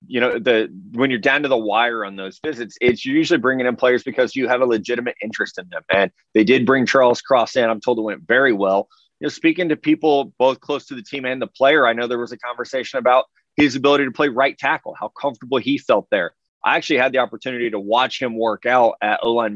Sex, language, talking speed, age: male, English, 250 wpm, 30-49